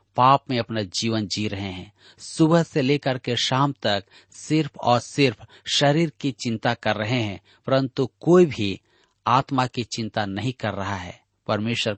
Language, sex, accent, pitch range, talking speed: Hindi, male, native, 105-145 Hz, 165 wpm